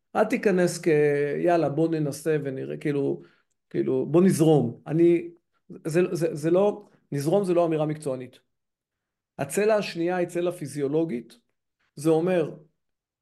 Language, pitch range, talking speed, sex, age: Hebrew, 150-185 Hz, 125 wpm, male, 40-59